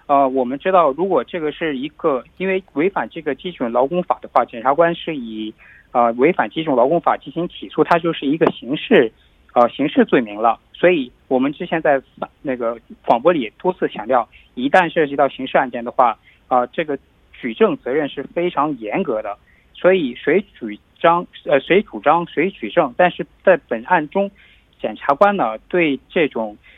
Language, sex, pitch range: Korean, male, 120-175 Hz